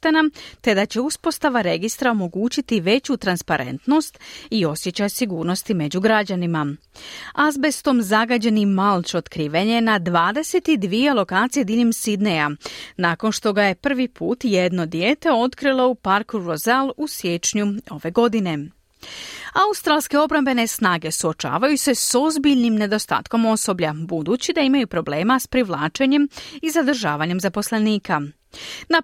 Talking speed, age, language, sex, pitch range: 120 wpm, 40-59, Croatian, female, 185-270 Hz